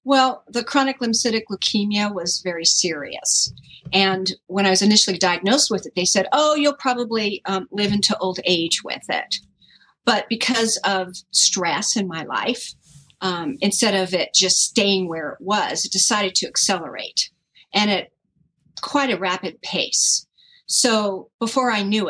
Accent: American